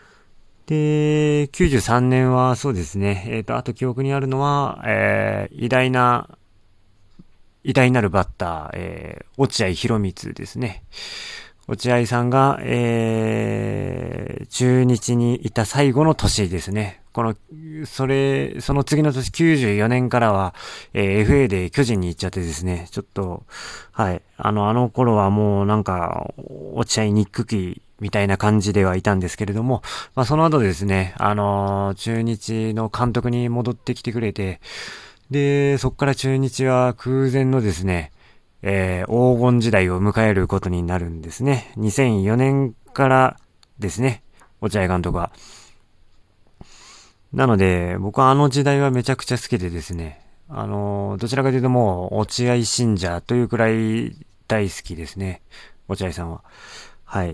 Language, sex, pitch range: Japanese, male, 100-130 Hz